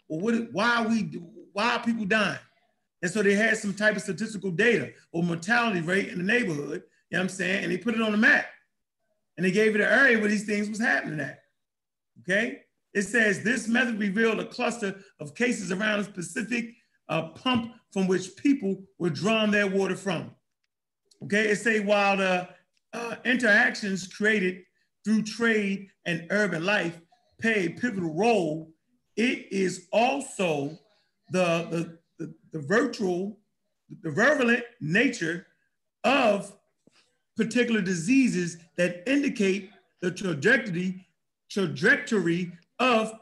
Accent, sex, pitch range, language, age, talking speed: American, male, 180-225 Hz, English, 40-59, 145 wpm